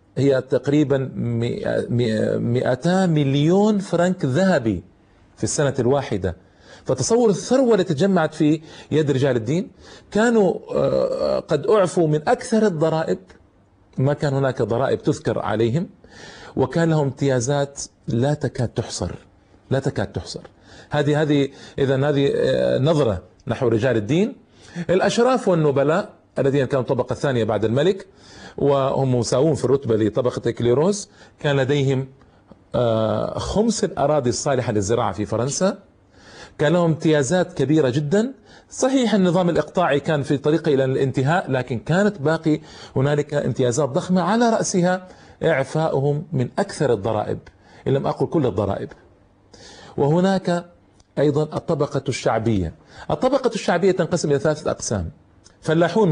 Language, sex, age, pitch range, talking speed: Arabic, male, 40-59, 120-175 Hz, 115 wpm